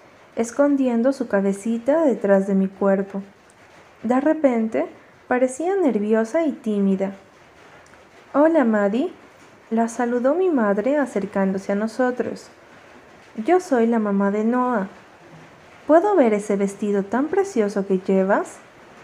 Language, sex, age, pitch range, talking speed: Spanish, female, 30-49, 200-275 Hz, 115 wpm